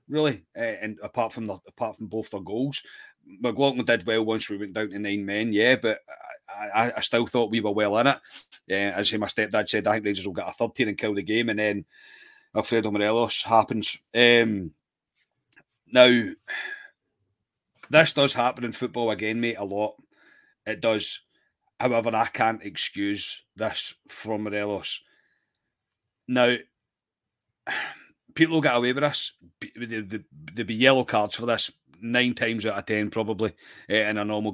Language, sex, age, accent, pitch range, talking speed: English, male, 30-49, British, 105-120 Hz, 170 wpm